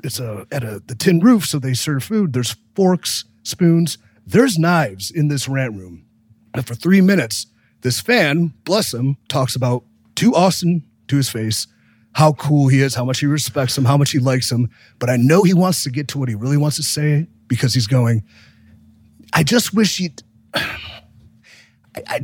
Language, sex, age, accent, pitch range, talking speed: English, male, 30-49, American, 115-170 Hz, 190 wpm